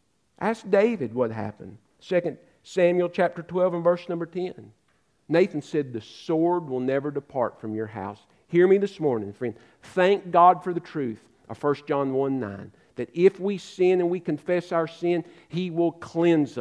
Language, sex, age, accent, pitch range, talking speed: English, male, 50-69, American, 120-190 Hz, 175 wpm